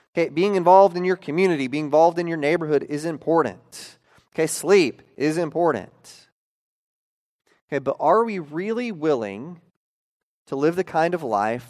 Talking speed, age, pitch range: 150 wpm, 30-49, 125-160 Hz